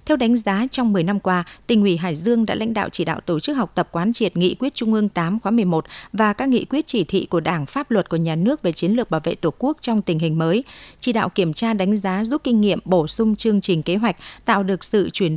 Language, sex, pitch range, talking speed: Vietnamese, female, 175-230 Hz, 280 wpm